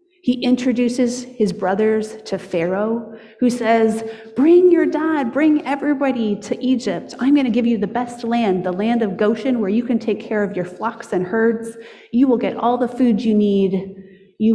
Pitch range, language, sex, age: 185-235 Hz, English, female, 30-49